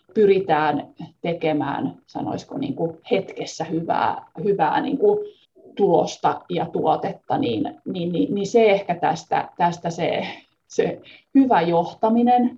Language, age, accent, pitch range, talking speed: Finnish, 30-49, native, 165-235 Hz, 110 wpm